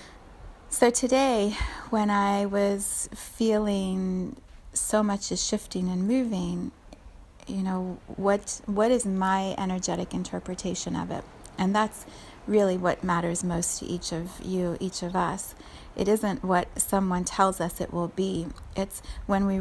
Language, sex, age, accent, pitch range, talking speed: English, female, 30-49, American, 185-205 Hz, 145 wpm